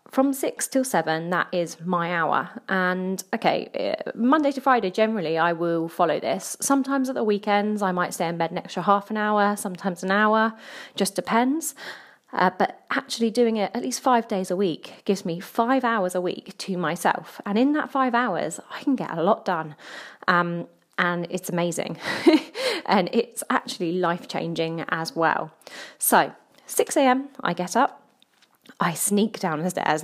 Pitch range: 175-245 Hz